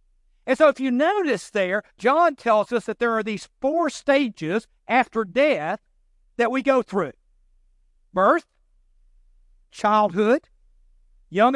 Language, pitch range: English, 190-235 Hz